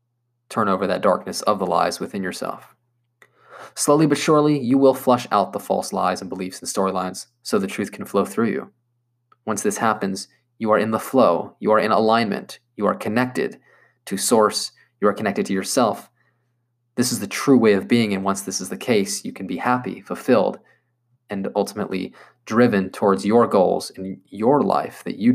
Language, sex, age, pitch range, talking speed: English, male, 20-39, 100-120 Hz, 190 wpm